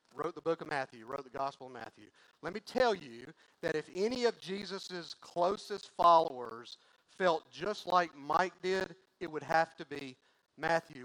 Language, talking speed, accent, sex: English, 175 wpm, American, male